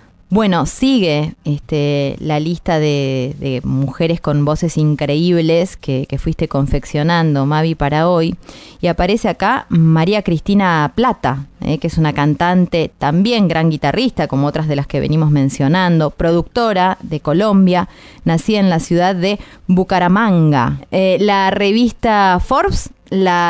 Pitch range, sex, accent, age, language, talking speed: 155-200 Hz, female, Argentinian, 20-39, Spanish, 135 wpm